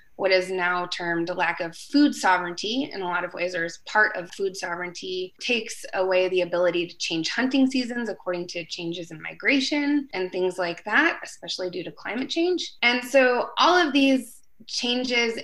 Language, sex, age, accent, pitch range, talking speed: English, female, 20-39, American, 180-235 Hz, 185 wpm